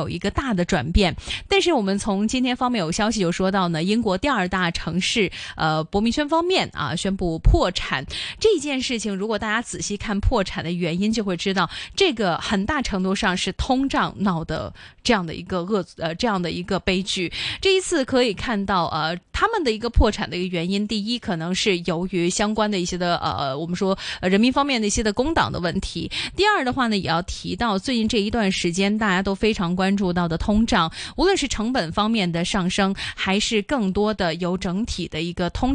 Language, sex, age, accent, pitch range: Chinese, female, 20-39, native, 180-235 Hz